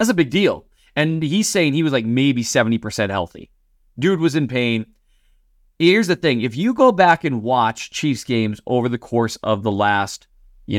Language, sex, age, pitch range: English, male, 30-49, 105-135 Hz